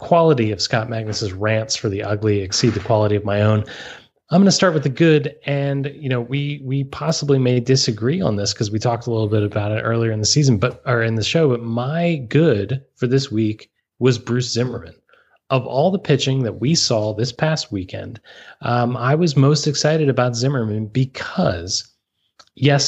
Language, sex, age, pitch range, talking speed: English, male, 20-39, 110-140 Hz, 200 wpm